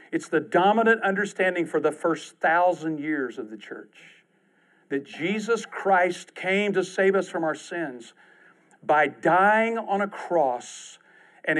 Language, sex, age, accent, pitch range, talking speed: English, male, 50-69, American, 155-200 Hz, 145 wpm